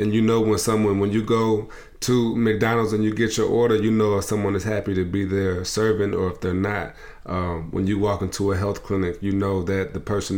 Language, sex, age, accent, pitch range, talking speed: English, male, 30-49, American, 90-105 Hz, 245 wpm